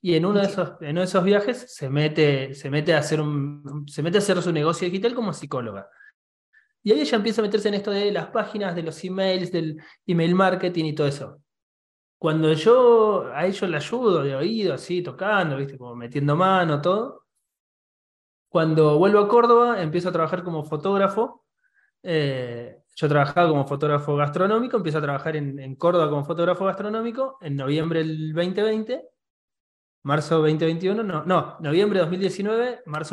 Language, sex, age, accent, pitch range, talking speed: Spanish, male, 20-39, Argentinian, 145-190 Hz, 155 wpm